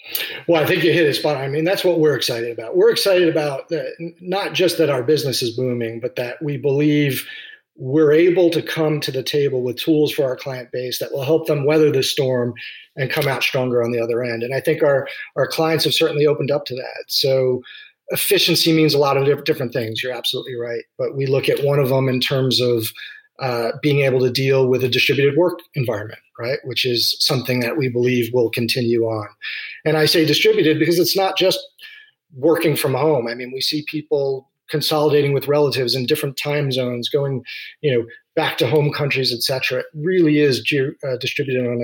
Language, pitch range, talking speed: English, 125-155 Hz, 210 wpm